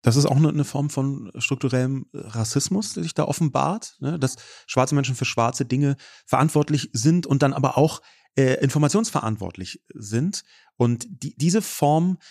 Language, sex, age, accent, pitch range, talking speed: German, male, 30-49, German, 130-165 Hz, 145 wpm